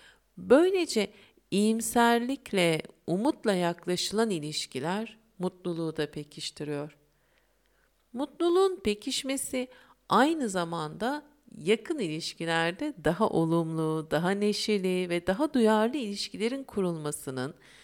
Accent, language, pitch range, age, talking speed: native, Turkish, 165-225 Hz, 50-69, 75 wpm